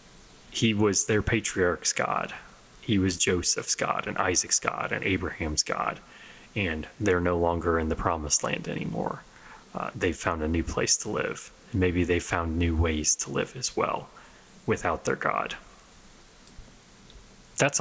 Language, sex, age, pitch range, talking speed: English, male, 30-49, 85-105 Hz, 160 wpm